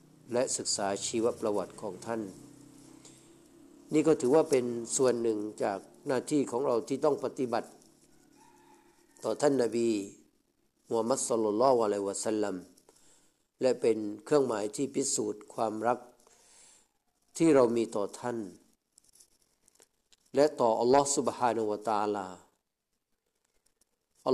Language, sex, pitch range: Thai, male, 110-140 Hz